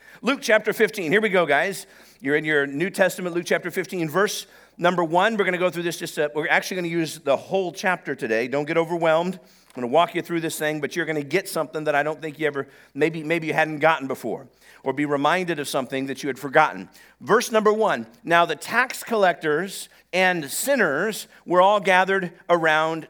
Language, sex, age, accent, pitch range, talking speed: English, male, 50-69, American, 155-205 Hz, 225 wpm